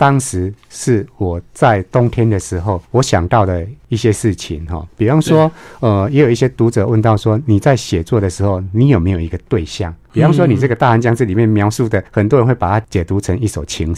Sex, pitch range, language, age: male, 90-120 Hz, Chinese, 50-69